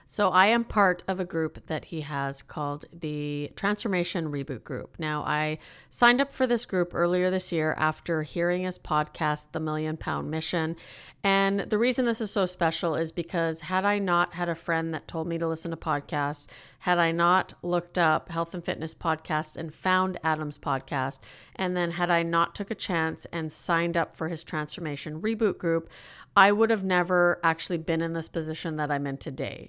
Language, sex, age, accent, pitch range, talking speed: English, female, 40-59, American, 155-185 Hz, 195 wpm